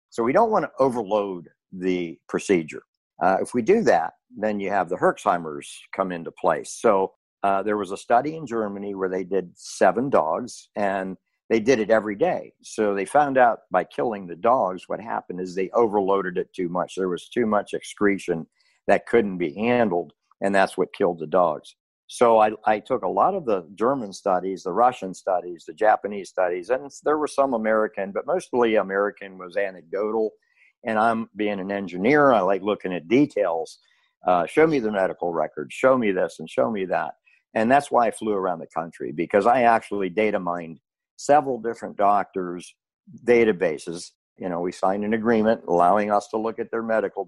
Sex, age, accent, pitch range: male, 50-69, American, 95-120 Hz